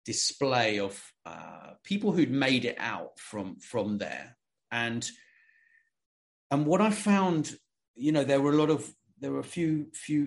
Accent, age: British, 40-59